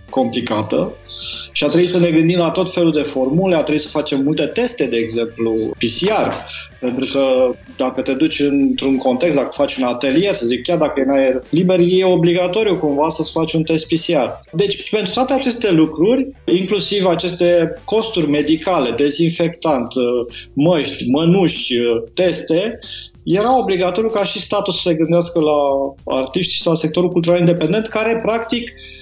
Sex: male